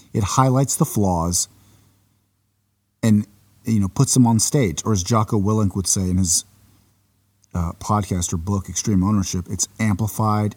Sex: male